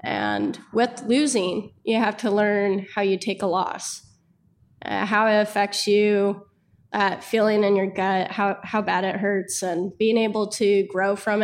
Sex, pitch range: female, 190-220 Hz